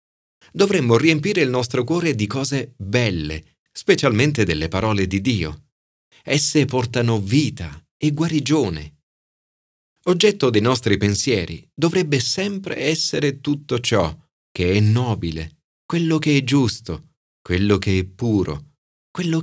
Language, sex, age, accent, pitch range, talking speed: Italian, male, 40-59, native, 90-140 Hz, 120 wpm